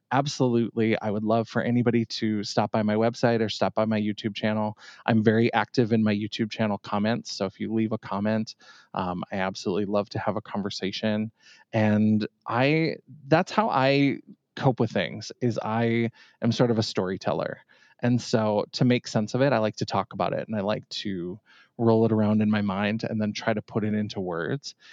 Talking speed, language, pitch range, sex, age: 205 wpm, English, 105-120 Hz, male, 20-39